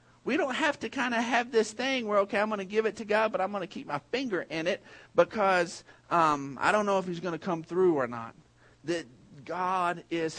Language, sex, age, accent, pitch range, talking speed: English, male, 40-59, American, 115-175 Hz, 250 wpm